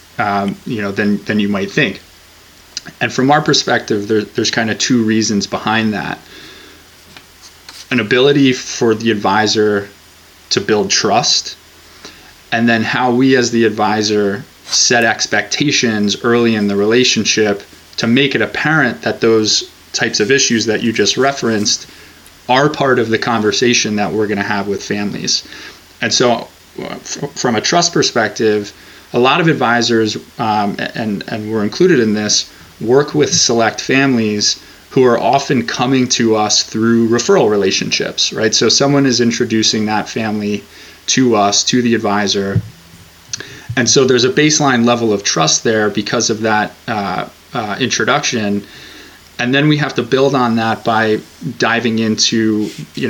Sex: male